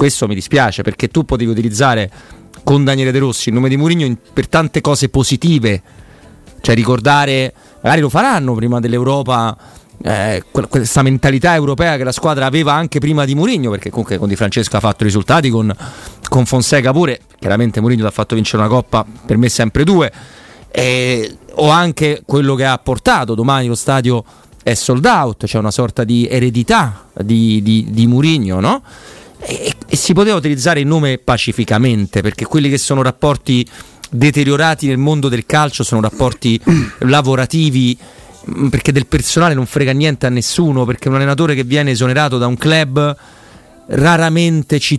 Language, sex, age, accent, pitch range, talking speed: Italian, male, 30-49, native, 115-145 Hz, 165 wpm